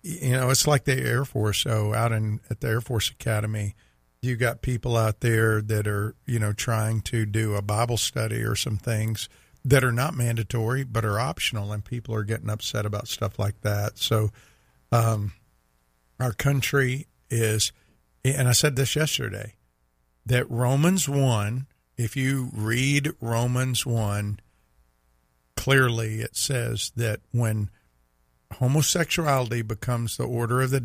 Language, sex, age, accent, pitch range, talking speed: English, male, 50-69, American, 105-125 Hz, 150 wpm